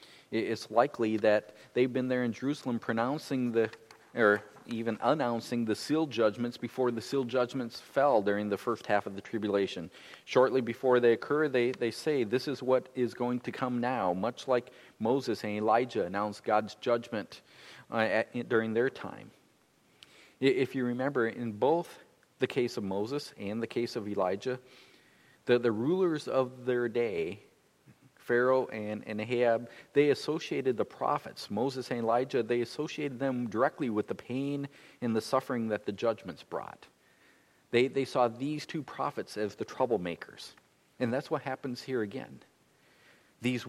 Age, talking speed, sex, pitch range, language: 40-59, 160 wpm, male, 115-130 Hz, English